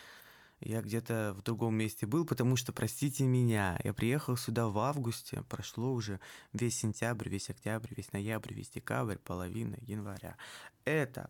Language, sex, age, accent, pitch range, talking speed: Russian, male, 20-39, native, 115-145 Hz, 150 wpm